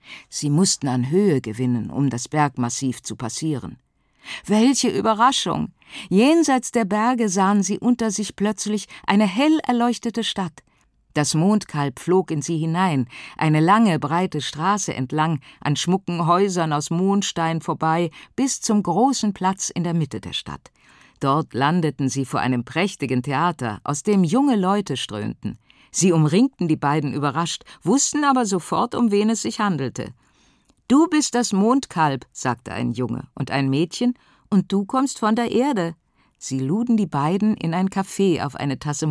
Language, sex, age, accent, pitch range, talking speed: German, female, 50-69, German, 140-210 Hz, 155 wpm